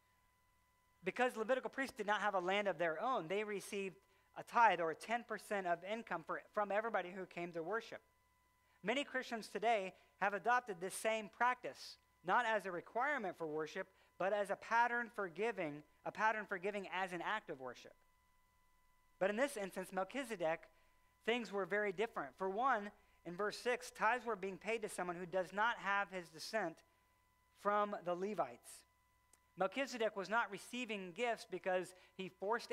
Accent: American